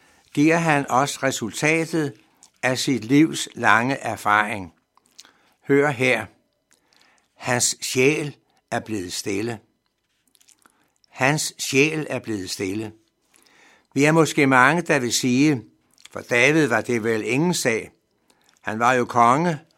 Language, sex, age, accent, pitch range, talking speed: Danish, male, 60-79, native, 115-150 Hz, 120 wpm